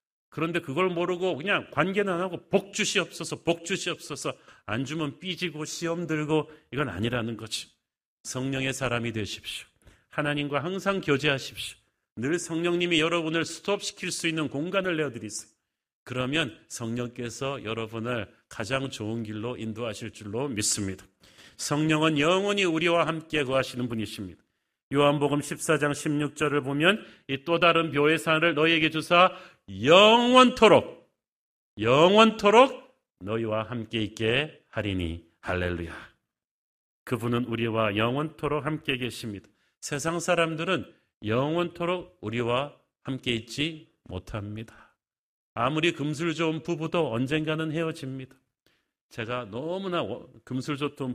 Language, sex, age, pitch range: Korean, male, 40-59, 115-165 Hz